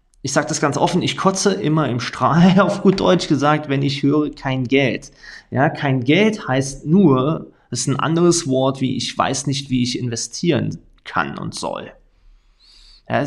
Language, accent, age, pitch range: German, German, 30-49, 125-155 Hz